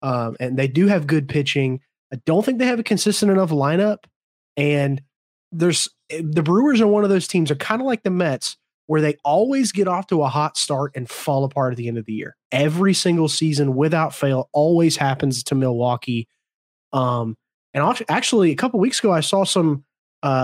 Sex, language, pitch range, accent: male, English, 135-175 Hz, American